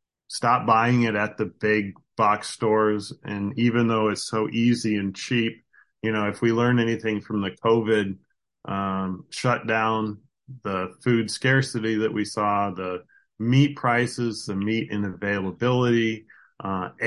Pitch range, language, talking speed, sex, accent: 105-120 Hz, English, 145 wpm, male, American